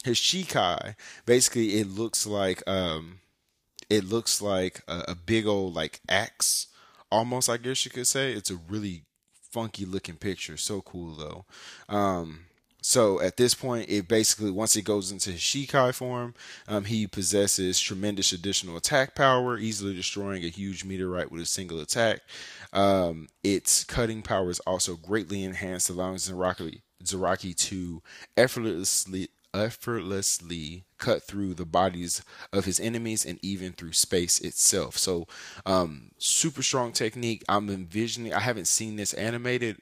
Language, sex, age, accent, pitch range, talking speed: English, male, 20-39, American, 90-110 Hz, 150 wpm